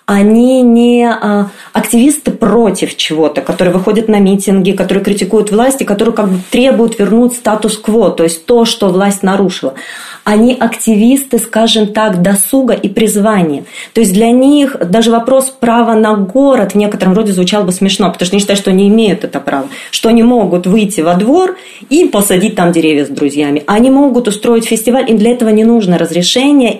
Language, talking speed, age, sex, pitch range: Russian, 175 wpm, 30-49, female, 195-235 Hz